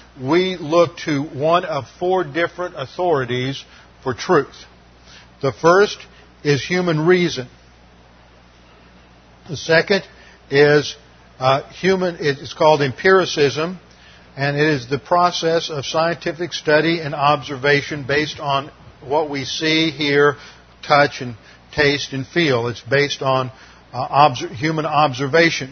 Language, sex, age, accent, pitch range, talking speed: English, male, 50-69, American, 130-160 Hz, 115 wpm